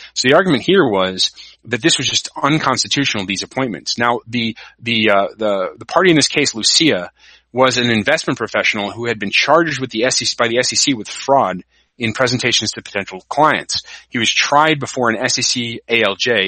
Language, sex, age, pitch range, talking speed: English, male, 30-49, 105-130 Hz, 185 wpm